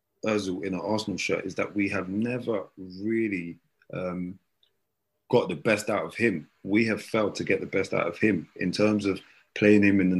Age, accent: 20-39, British